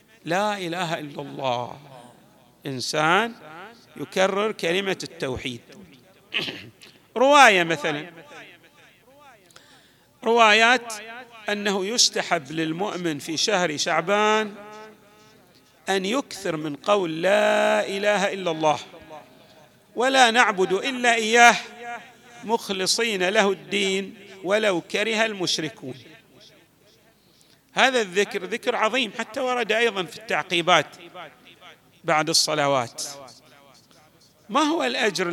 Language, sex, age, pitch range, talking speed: Arabic, male, 40-59, 160-225 Hz, 85 wpm